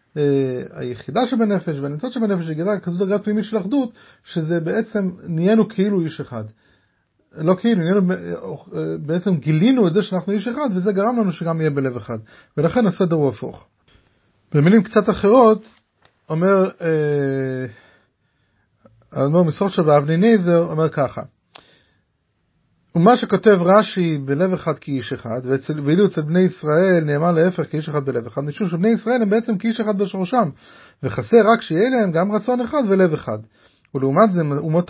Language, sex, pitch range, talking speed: English, male, 145-215 Hz, 120 wpm